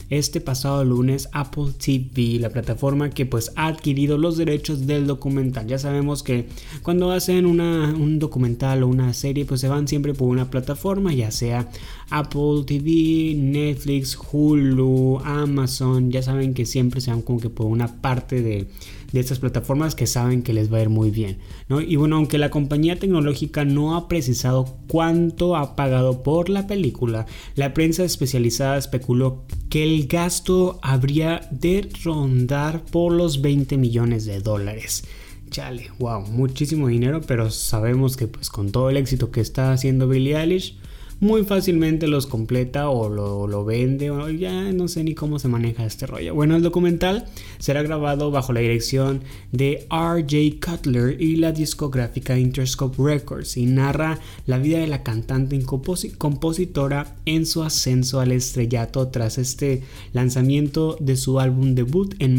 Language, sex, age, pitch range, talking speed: Spanish, male, 20-39, 125-155 Hz, 160 wpm